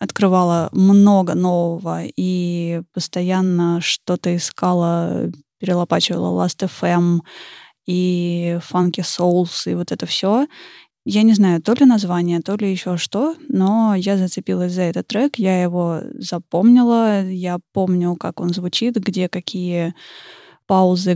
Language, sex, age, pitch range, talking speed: Russian, female, 20-39, 175-200 Hz, 125 wpm